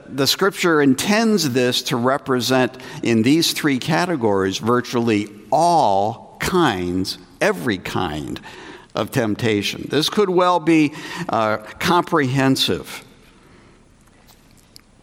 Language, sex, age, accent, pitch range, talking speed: English, male, 60-79, American, 110-170 Hz, 90 wpm